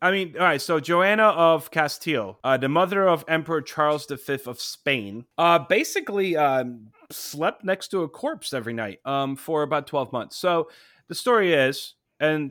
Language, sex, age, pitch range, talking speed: English, male, 30-49, 120-155 Hz, 175 wpm